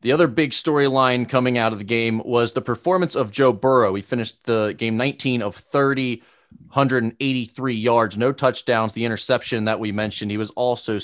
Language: English